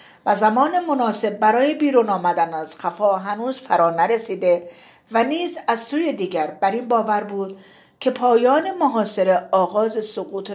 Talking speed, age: 140 wpm, 50-69